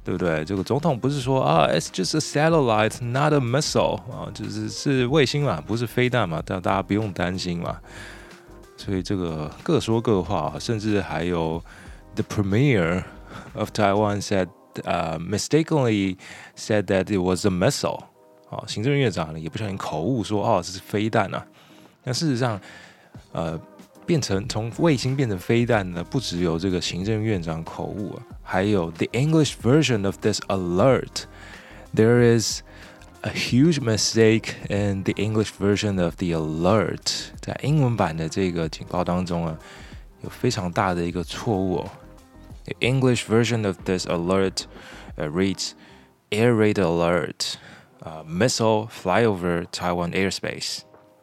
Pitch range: 90-120 Hz